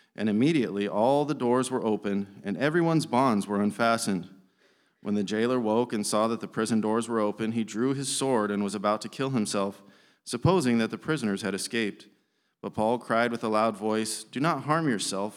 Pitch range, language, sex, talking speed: 105-130 Hz, English, male, 200 wpm